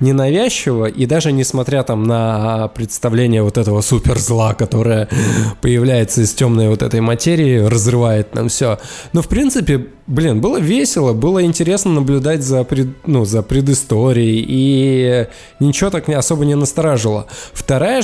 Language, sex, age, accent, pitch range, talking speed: Russian, male, 20-39, native, 115-145 Hz, 130 wpm